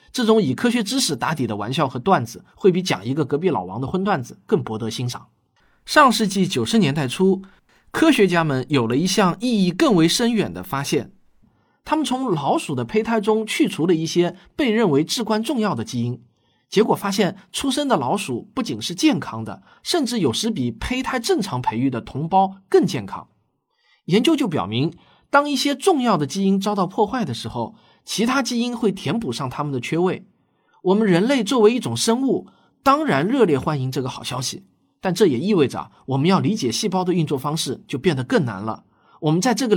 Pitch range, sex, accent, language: 145-235 Hz, male, native, Chinese